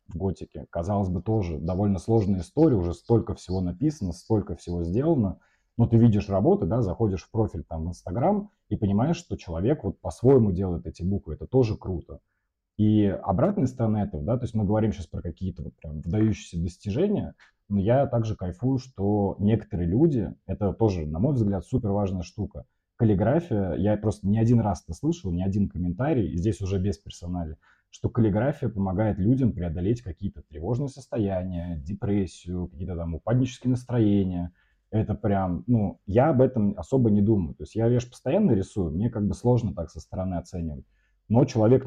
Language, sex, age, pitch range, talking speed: Russian, male, 30-49, 90-115 Hz, 175 wpm